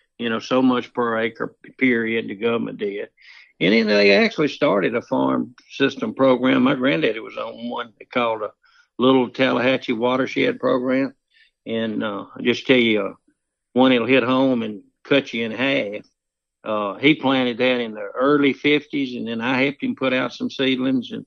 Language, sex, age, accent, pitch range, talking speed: English, male, 60-79, American, 115-130 Hz, 185 wpm